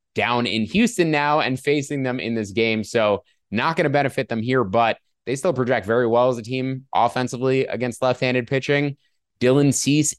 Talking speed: 190 wpm